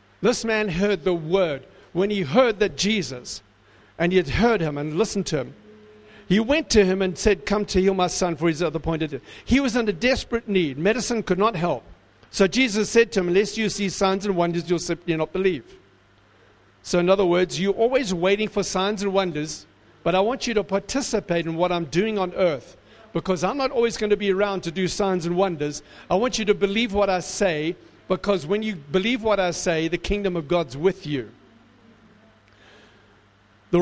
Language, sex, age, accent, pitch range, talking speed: English, male, 50-69, South African, 150-200 Hz, 210 wpm